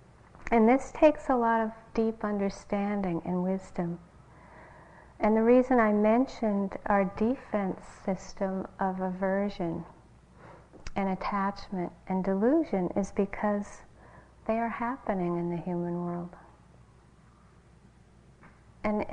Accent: American